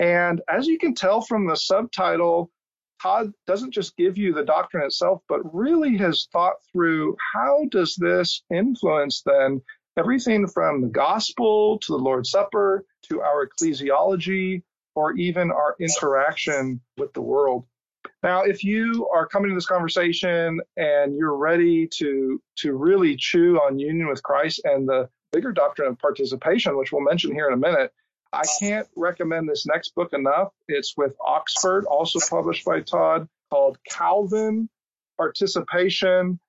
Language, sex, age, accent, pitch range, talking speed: English, male, 40-59, American, 155-215 Hz, 155 wpm